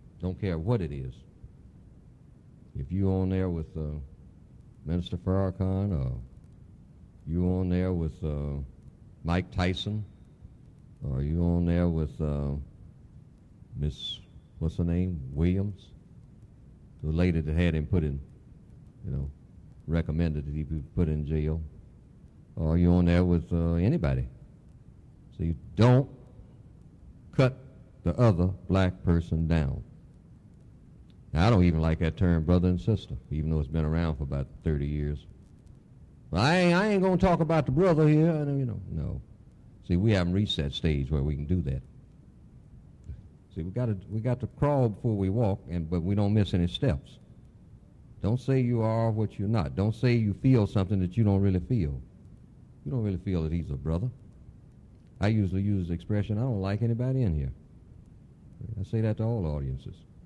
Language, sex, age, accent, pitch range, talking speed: English, male, 60-79, American, 80-105 Hz, 165 wpm